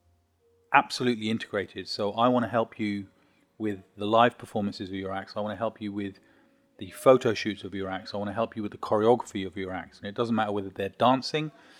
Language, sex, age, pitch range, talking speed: English, male, 30-49, 100-115 Hz, 230 wpm